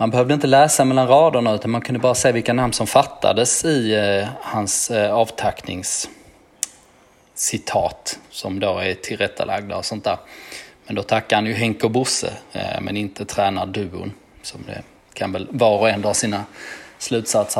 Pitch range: 105-130 Hz